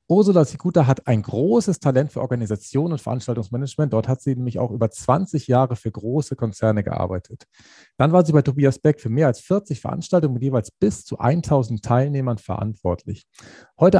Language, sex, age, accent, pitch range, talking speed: German, male, 40-59, German, 115-150 Hz, 175 wpm